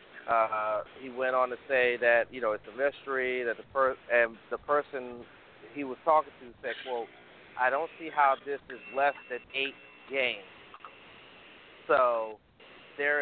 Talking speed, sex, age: 165 wpm, male, 40-59